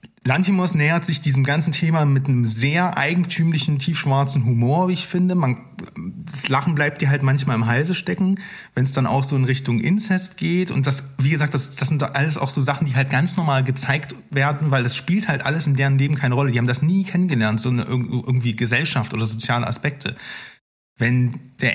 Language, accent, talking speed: German, German, 200 wpm